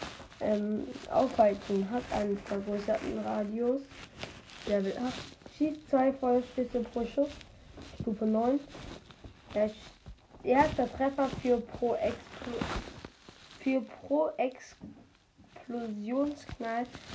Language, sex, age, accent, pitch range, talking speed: German, female, 10-29, German, 220-270 Hz, 80 wpm